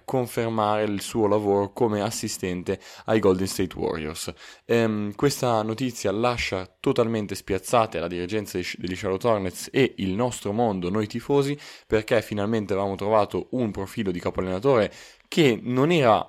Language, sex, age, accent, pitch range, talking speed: Italian, male, 20-39, native, 95-120 Hz, 150 wpm